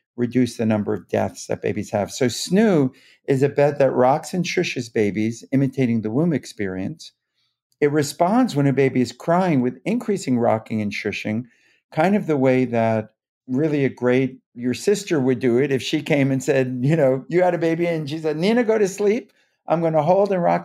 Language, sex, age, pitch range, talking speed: English, male, 50-69, 115-160 Hz, 205 wpm